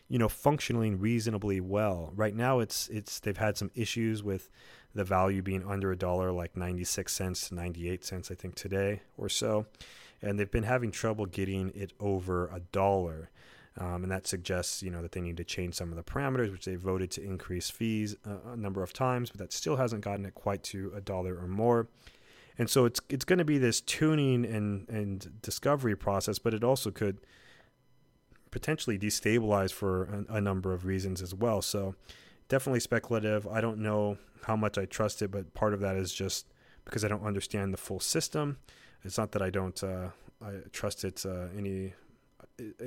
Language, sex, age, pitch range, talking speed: English, male, 30-49, 95-110 Hz, 195 wpm